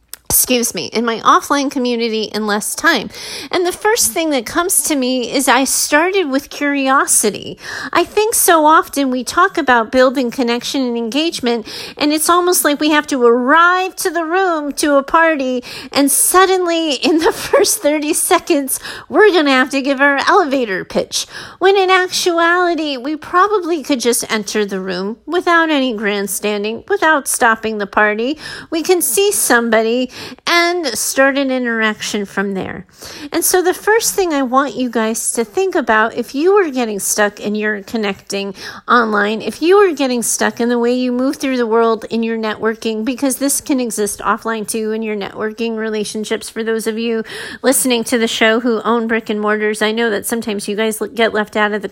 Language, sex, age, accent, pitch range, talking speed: English, female, 40-59, American, 225-330 Hz, 185 wpm